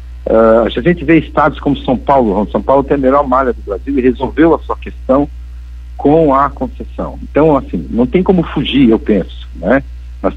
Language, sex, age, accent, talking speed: Portuguese, male, 60-79, Brazilian, 190 wpm